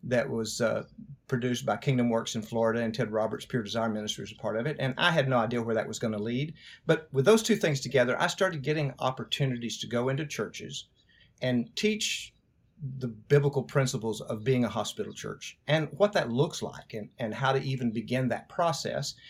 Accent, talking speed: American, 210 wpm